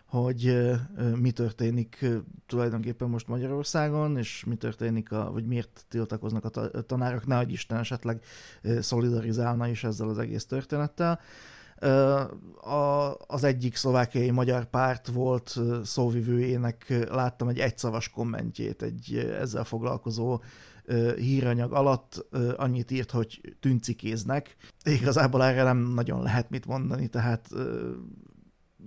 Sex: male